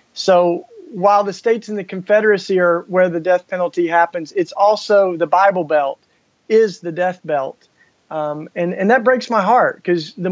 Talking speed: 180 wpm